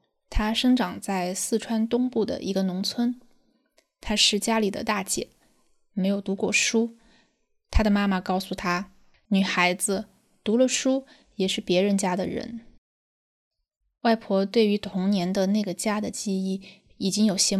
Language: Chinese